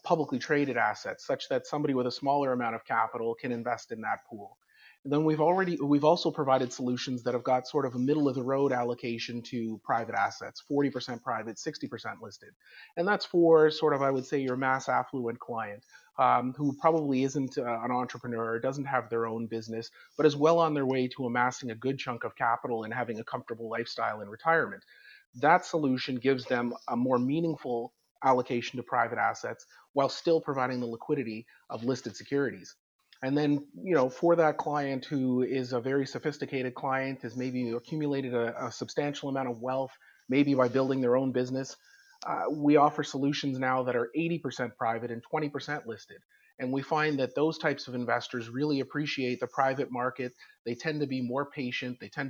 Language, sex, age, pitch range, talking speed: English, male, 30-49, 125-145 Hz, 190 wpm